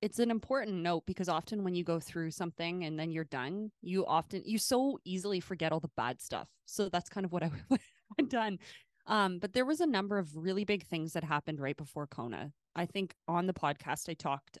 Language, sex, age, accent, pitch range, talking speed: English, female, 20-39, American, 155-185 Hz, 225 wpm